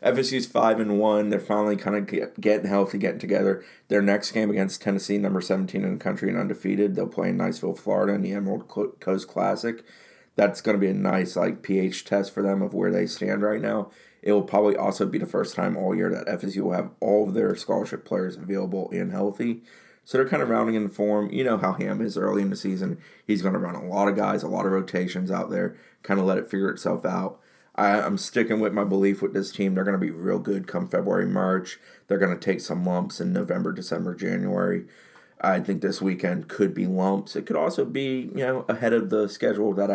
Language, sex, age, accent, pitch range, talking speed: English, male, 30-49, American, 95-105 Hz, 230 wpm